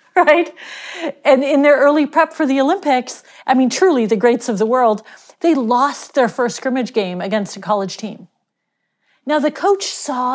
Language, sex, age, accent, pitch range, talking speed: English, female, 40-59, American, 215-285 Hz, 180 wpm